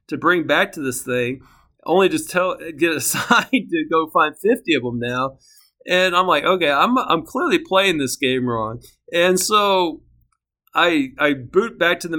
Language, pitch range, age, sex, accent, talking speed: English, 130-185 Hz, 40-59, male, American, 185 wpm